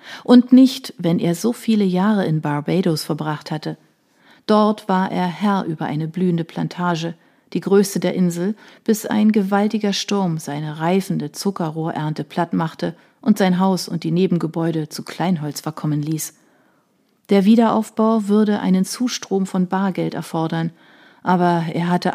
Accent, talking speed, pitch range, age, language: German, 140 wpm, 165-210 Hz, 40-59, German